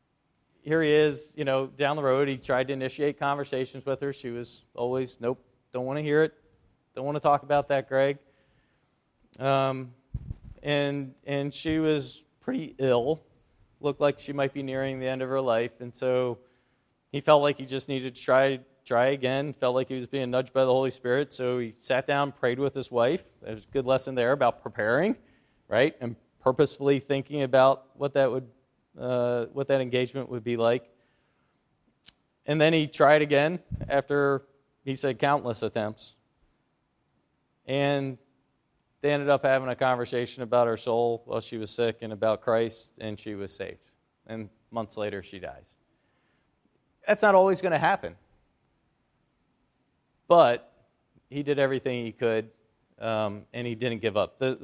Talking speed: 170 wpm